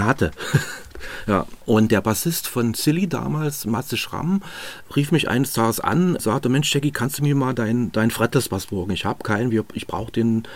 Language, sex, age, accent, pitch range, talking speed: German, male, 40-59, German, 110-140 Hz, 190 wpm